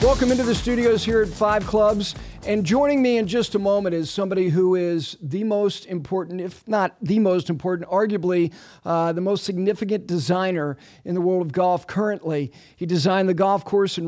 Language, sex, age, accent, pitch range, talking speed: English, male, 40-59, American, 170-190 Hz, 190 wpm